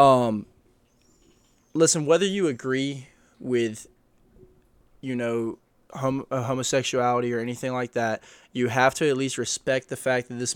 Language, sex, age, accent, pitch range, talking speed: English, male, 20-39, American, 120-135 Hz, 130 wpm